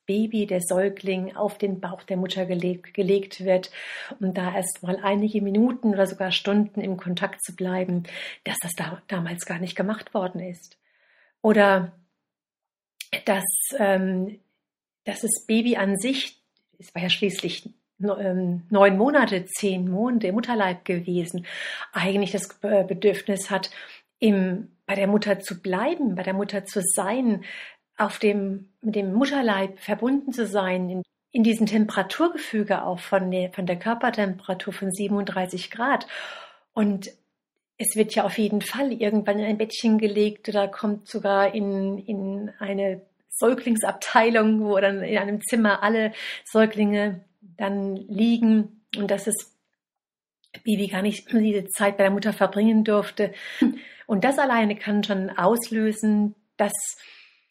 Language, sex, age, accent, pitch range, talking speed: German, female, 50-69, German, 190-215 Hz, 135 wpm